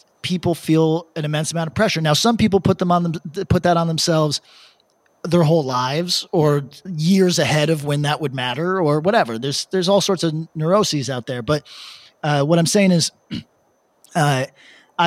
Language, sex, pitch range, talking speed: English, male, 130-165 Hz, 185 wpm